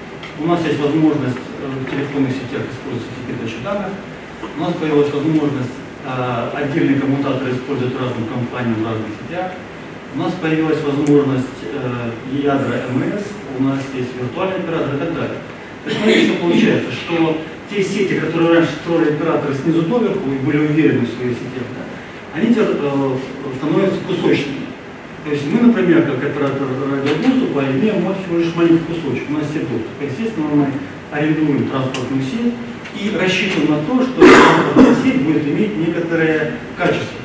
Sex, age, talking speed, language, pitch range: male, 40-59, 150 wpm, Russian, 135-170 Hz